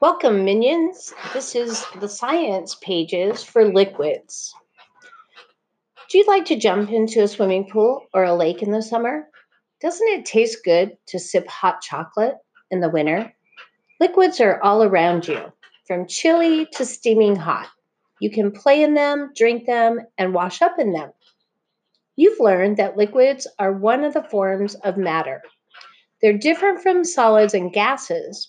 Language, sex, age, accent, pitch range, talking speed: English, female, 40-59, American, 195-290 Hz, 155 wpm